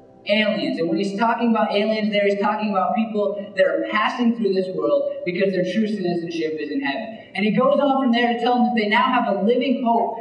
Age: 20-39